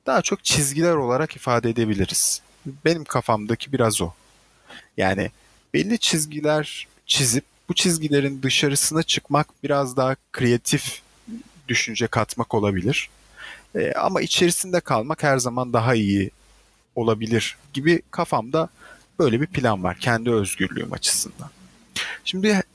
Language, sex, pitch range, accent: Turkish, male, 115-155 Hz, native